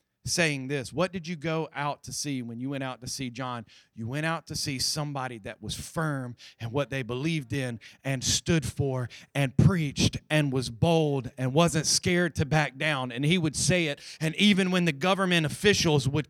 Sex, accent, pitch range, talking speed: male, American, 145-230 Hz, 205 wpm